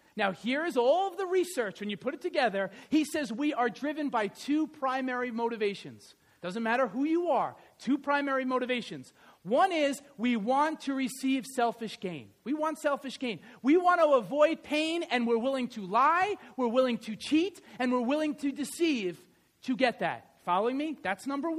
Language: English